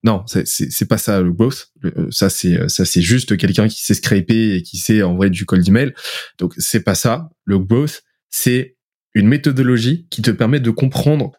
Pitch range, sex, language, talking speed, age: 110-135 Hz, male, French, 205 wpm, 20-39